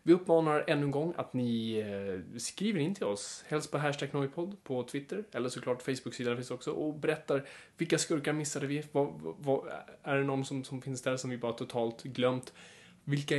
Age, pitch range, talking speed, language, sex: 20-39, 125-155 Hz, 195 wpm, Swedish, male